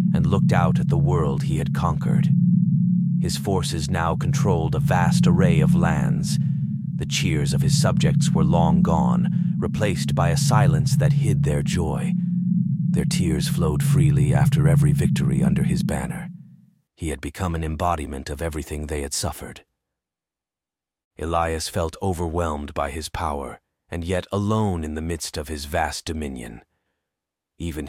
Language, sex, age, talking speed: English, male, 30-49, 155 wpm